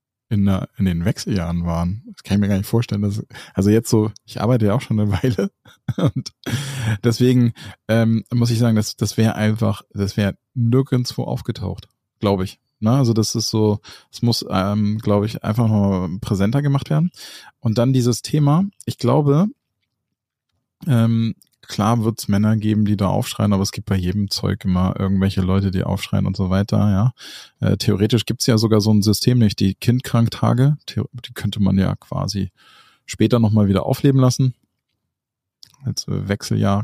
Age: 20-39